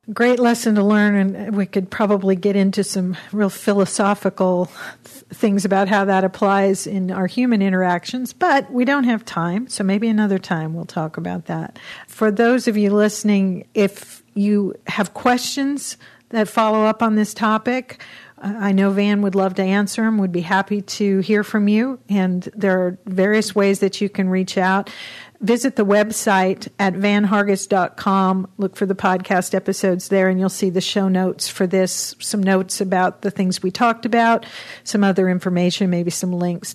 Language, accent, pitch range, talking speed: English, American, 190-215 Hz, 180 wpm